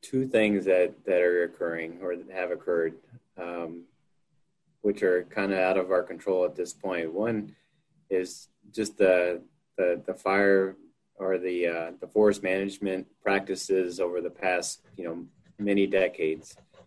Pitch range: 90-100 Hz